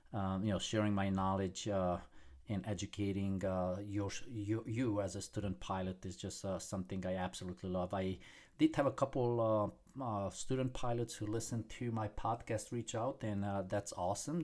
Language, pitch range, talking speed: English, 100-115 Hz, 185 wpm